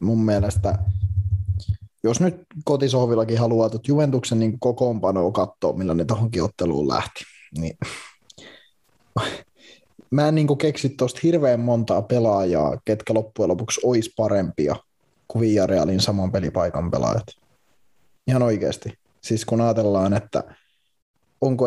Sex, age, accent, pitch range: male, 20-39, native, 100-115 Hz